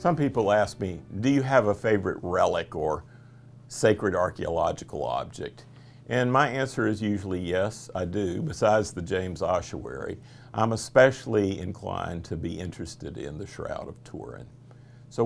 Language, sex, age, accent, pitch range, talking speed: English, male, 50-69, American, 90-125 Hz, 150 wpm